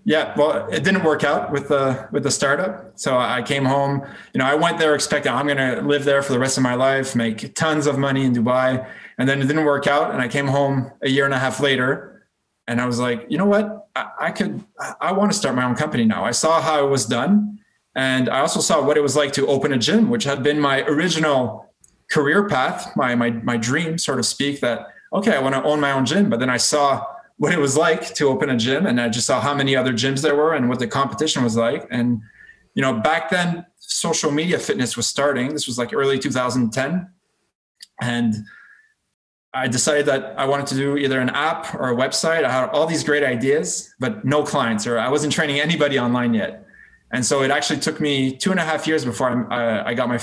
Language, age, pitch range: English, 20-39, 125-150 Hz